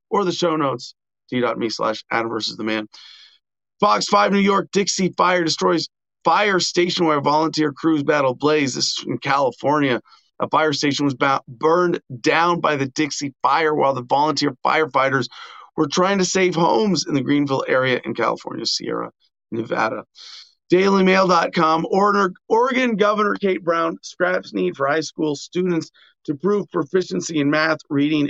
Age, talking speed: 40-59, 155 wpm